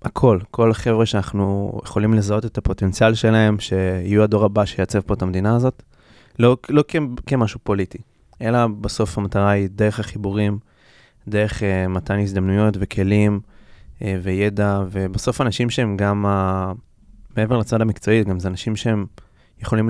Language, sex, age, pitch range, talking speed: Hebrew, male, 20-39, 95-110 Hz, 140 wpm